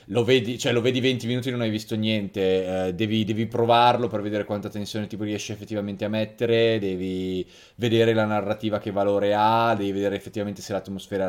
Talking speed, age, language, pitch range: 195 wpm, 20-39, Italian, 100-125 Hz